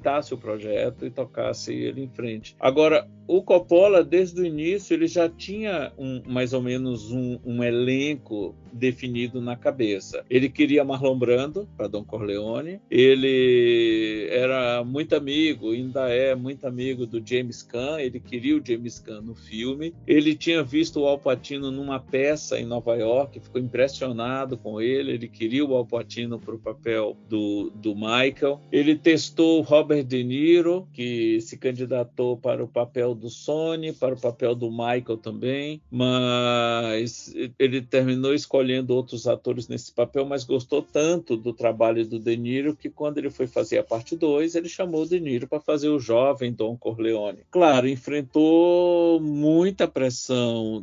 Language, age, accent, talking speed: Portuguese, 50-69, Brazilian, 160 wpm